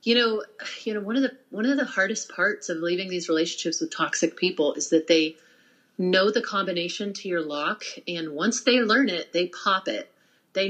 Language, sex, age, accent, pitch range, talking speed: English, female, 30-49, American, 175-220 Hz, 210 wpm